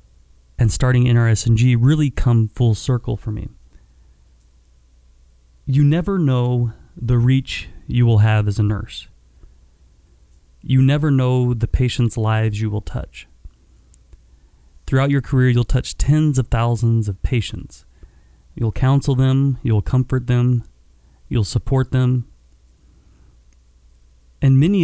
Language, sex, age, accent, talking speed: English, male, 30-49, American, 120 wpm